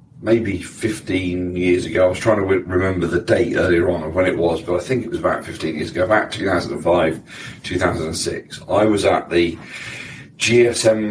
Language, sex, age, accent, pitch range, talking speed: English, male, 40-59, British, 85-110 Hz, 195 wpm